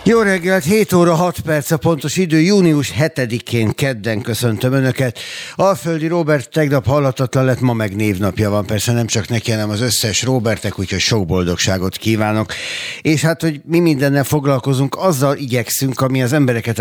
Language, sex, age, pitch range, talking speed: Hungarian, male, 60-79, 95-125 Hz, 160 wpm